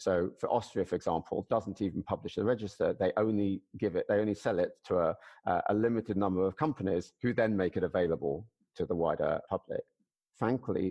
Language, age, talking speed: English, 50-69, 190 wpm